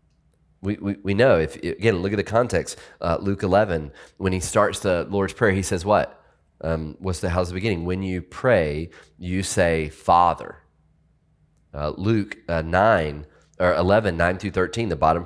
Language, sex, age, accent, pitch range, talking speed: English, male, 30-49, American, 80-100 Hz, 175 wpm